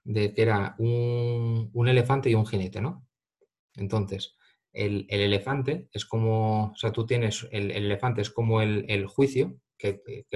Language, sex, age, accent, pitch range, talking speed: Spanish, male, 20-39, Spanish, 100-125 Hz, 175 wpm